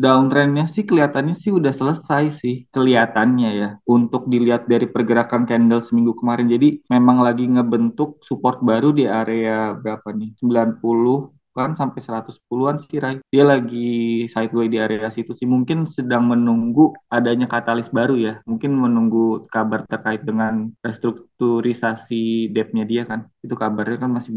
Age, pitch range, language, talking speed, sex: 20-39, 115-135 Hz, Indonesian, 145 wpm, male